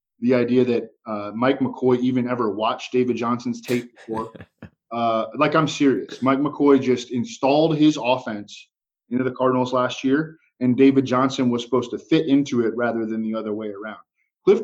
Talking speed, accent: 180 wpm, American